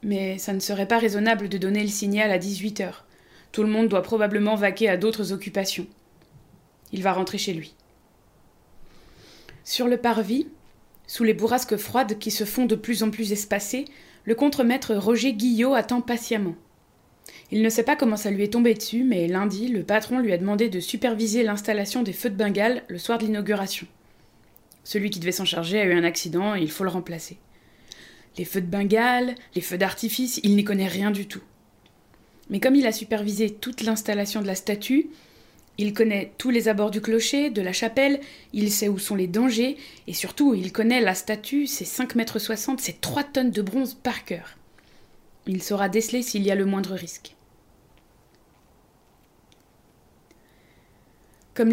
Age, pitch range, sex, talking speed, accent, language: 20-39, 195-240 Hz, female, 180 wpm, French, French